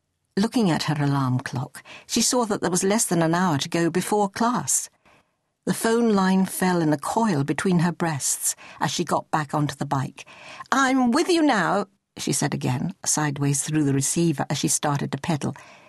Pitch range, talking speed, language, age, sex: 150-225 Hz, 195 wpm, English, 60-79, female